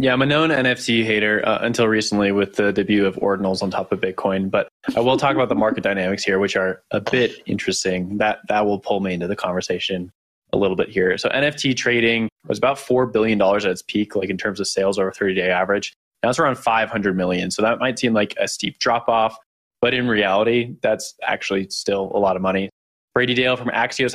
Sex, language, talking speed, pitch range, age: male, English, 220 wpm, 100-120 Hz, 20-39